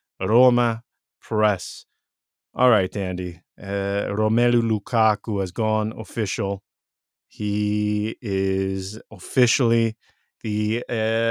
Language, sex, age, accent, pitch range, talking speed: English, male, 30-49, American, 105-135 Hz, 85 wpm